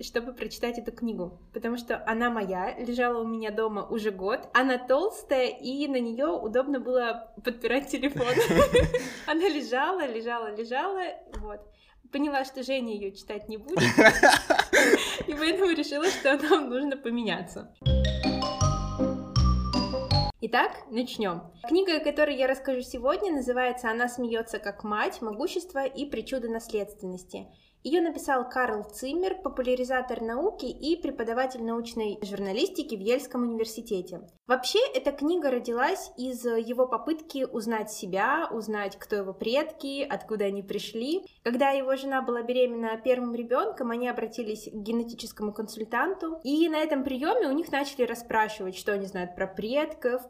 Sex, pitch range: female, 215-275 Hz